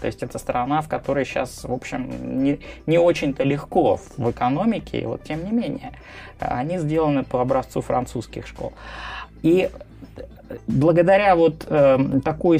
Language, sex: Russian, male